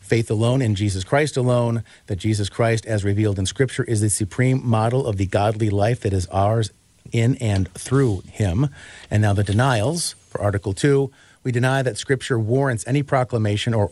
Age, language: 50-69, English